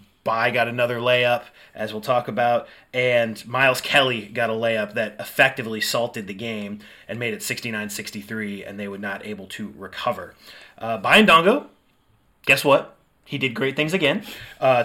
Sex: male